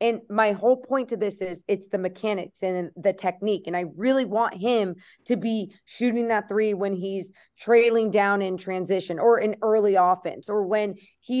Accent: American